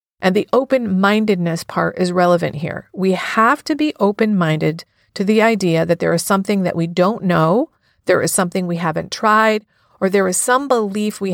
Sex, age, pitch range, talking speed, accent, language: female, 40-59, 175-210 Hz, 185 wpm, American, English